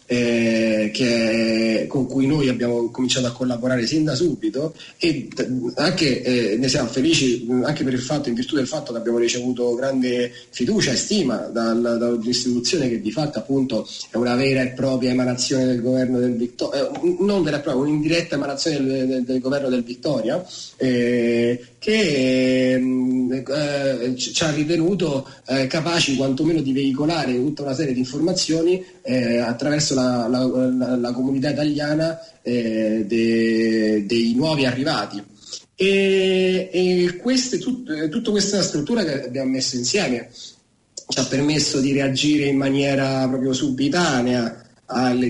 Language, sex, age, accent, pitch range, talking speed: Italian, male, 30-49, native, 120-140 Hz, 145 wpm